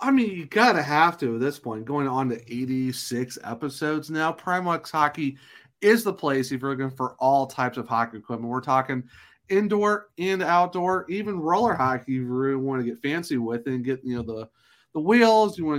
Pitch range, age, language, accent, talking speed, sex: 130-170 Hz, 30-49, English, American, 205 wpm, male